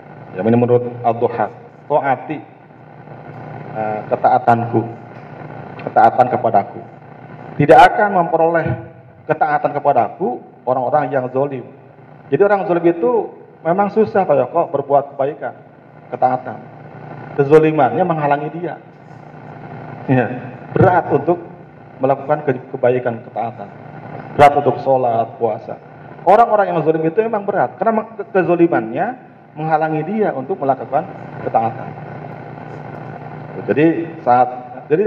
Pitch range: 125-160 Hz